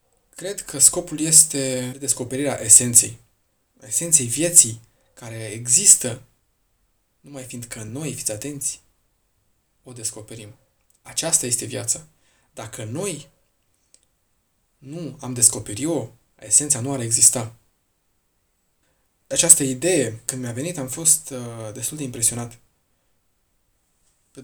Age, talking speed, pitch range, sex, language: 20-39, 100 wpm, 110-135 Hz, male, Romanian